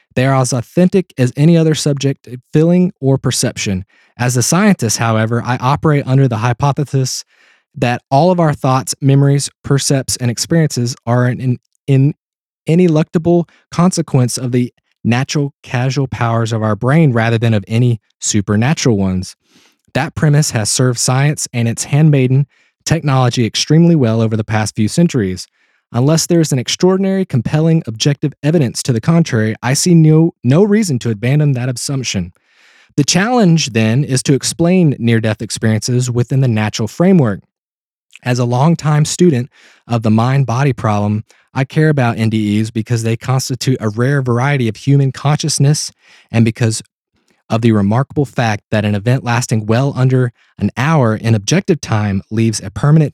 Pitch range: 115-150 Hz